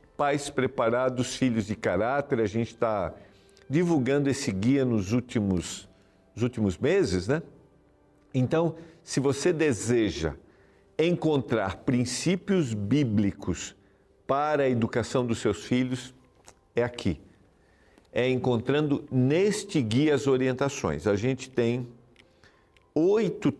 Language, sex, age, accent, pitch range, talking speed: Portuguese, male, 50-69, Brazilian, 105-135 Hz, 105 wpm